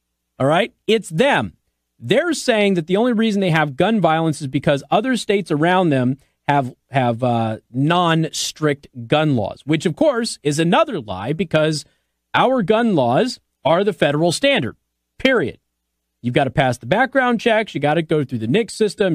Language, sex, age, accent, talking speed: English, male, 40-59, American, 180 wpm